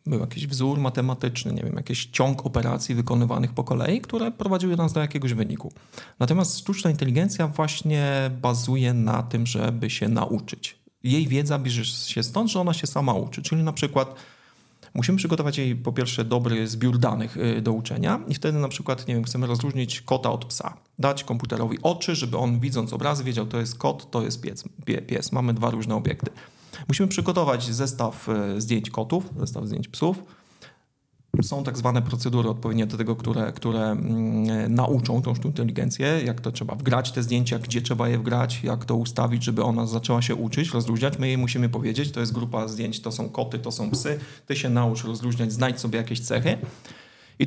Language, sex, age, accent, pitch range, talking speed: Polish, male, 40-59, native, 115-140 Hz, 185 wpm